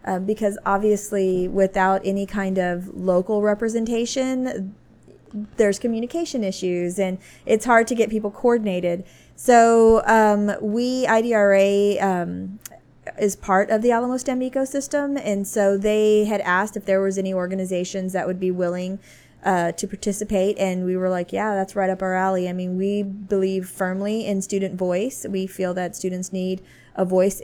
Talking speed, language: 160 wpm, English